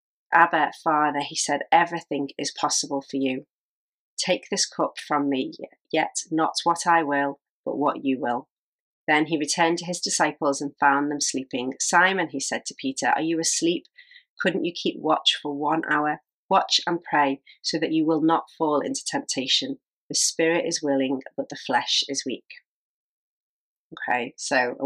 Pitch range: 140-165 Hz